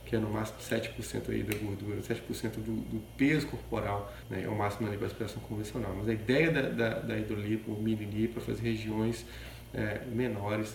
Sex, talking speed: male, 195 wpm